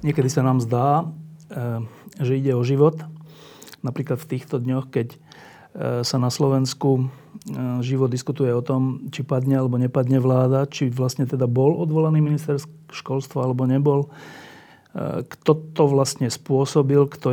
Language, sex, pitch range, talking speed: Slovak, male, 120-140 Hz, 135 wpm